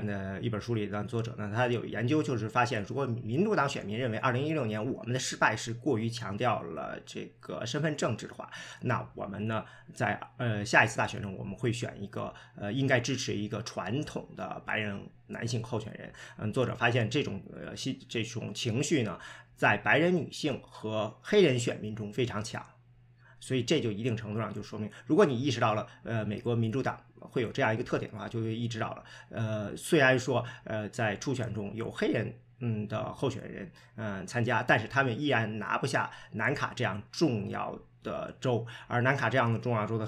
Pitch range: 105-125 Hz